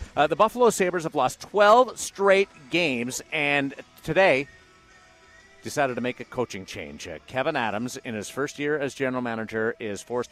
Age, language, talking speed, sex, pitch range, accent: 50-69, English, 170 wpm, male, 105-130 Hz, American